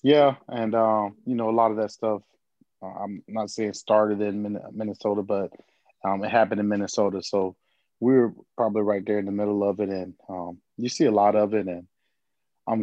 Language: English